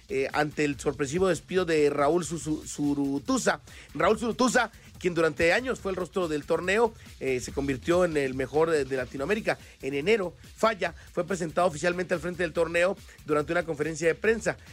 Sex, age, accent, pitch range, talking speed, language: male, 40-59, Mexican, 145-185 Hz, 170 wpm, Spanish